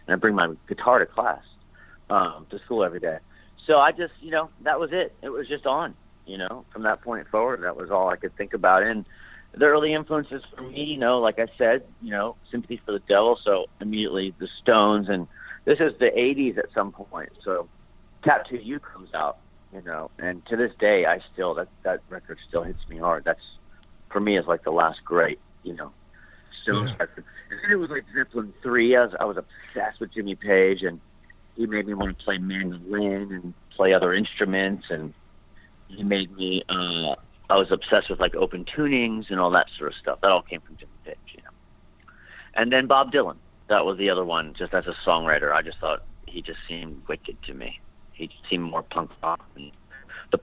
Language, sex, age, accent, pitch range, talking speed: English, male, 50-69, American, 85-120 Hz, 210 wpm